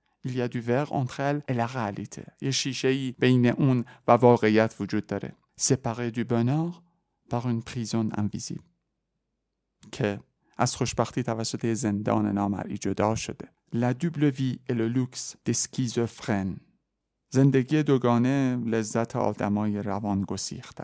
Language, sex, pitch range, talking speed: Persian, male, 110-130 Hz, 110 wpm